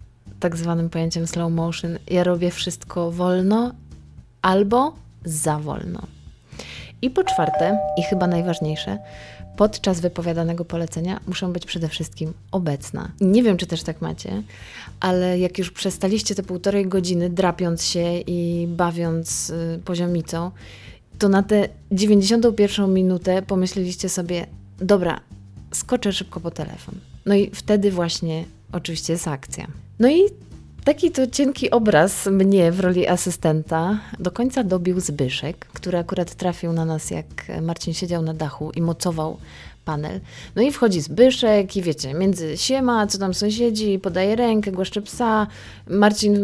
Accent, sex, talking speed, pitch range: native, female, 140 wpm, 165-200 Hz